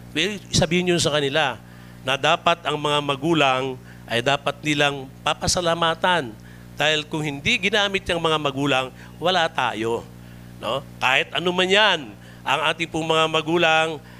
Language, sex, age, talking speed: Filipino, male, 50-69, 140 wpm